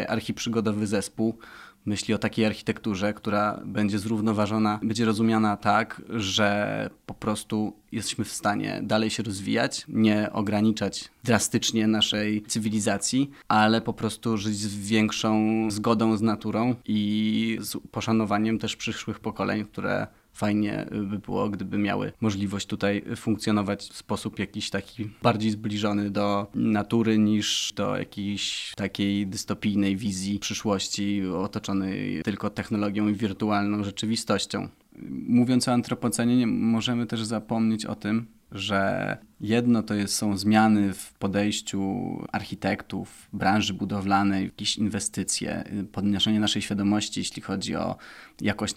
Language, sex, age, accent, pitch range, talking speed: Polish, male, 20-39, native, 100-110 Hz, 120 wpm